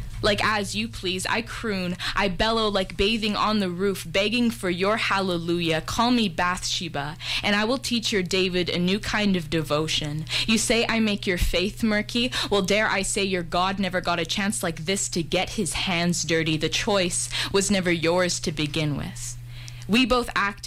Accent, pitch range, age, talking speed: American, 170-210 Hz, 10-29, 190 wpm